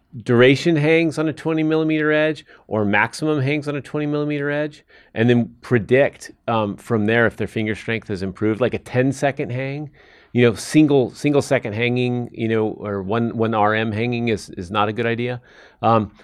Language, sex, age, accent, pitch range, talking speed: English, male, 40-59, American, 110-135 Hz, 190 wpm